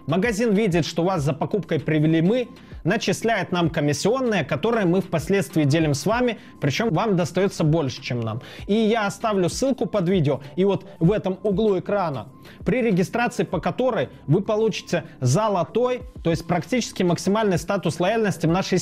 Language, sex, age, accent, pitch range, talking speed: Russian, male, 20-39, native, 160-210 Hz, 160 wpm